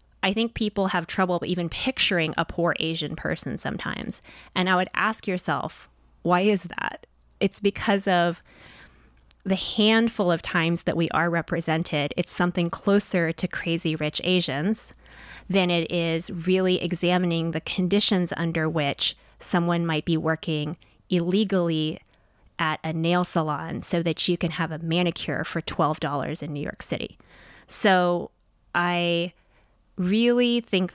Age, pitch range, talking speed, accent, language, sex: 30-49, 160-185 Hz, 140 wpm, American, English, female